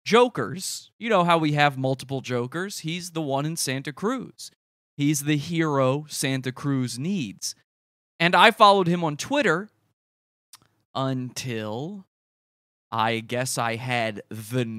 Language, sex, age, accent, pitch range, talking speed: English, male, 30-49, American, 135-210 Hz, 130 wpm